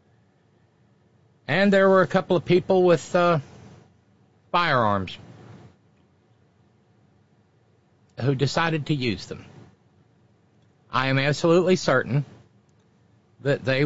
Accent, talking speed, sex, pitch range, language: American, 90 wpm, male, 105-145 Hz, English